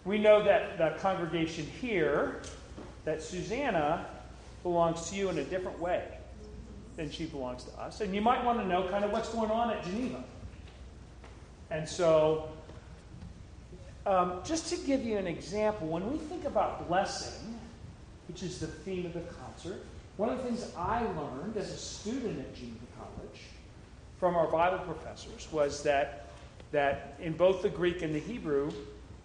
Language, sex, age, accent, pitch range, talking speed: English, male, 40-59, American, 150-190 Hz, 165 wpm